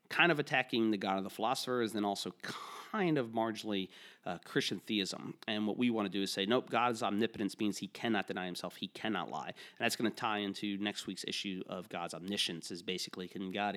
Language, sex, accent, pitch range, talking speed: English, male, American, 95-105 Hz, 220 wpm